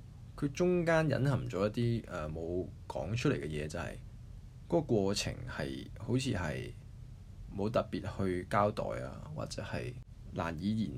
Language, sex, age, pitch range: Chinese, male, 20-39, 100-125 Hz